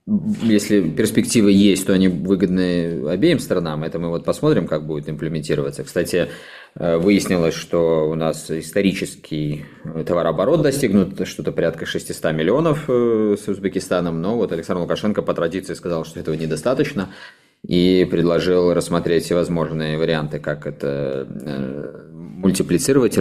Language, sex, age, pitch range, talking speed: Russian, male, 20-39, 80-100 Hz, 120 wpm